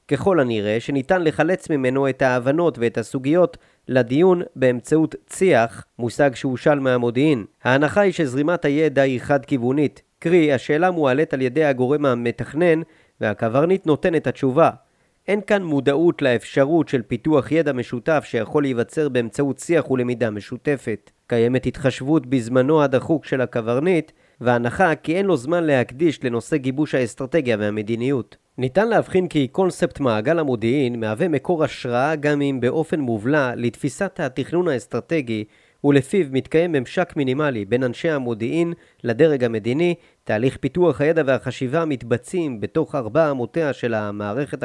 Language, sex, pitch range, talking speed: Hebrew, male, 125-160 Hz, 130 wpm